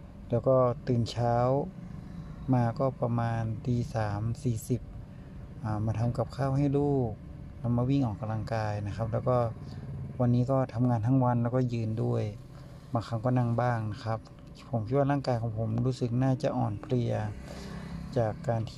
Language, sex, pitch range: Thai, male, 115-130 Hz